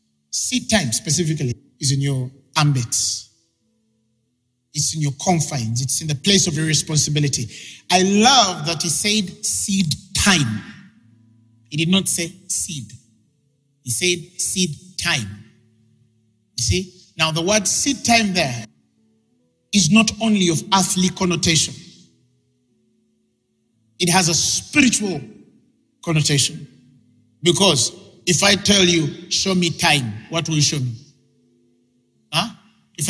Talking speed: 120 wpm